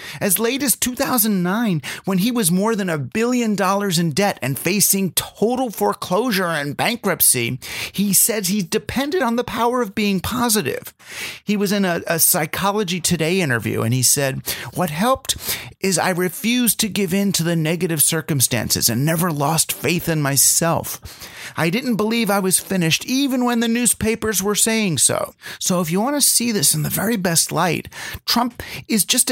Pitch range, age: 150-215 Hz, 30-49